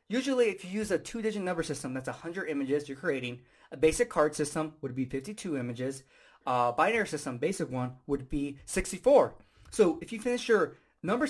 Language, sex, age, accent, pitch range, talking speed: English, male, 20-39, American, 140-215 Hz, 185 wpm